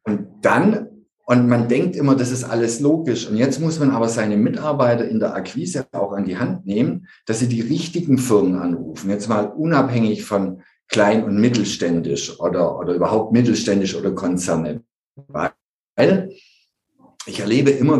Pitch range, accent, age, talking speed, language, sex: 120-155 Hz, German, 50-69, 160 wpm, German, male